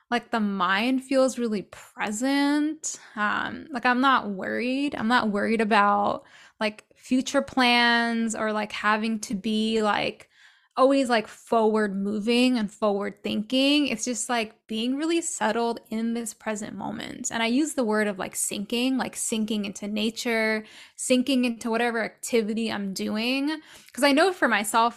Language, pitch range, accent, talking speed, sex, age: English, 215-270 Hz, American, 155 wpm, female, 10-29